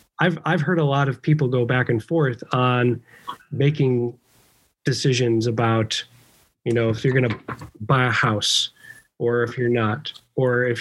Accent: American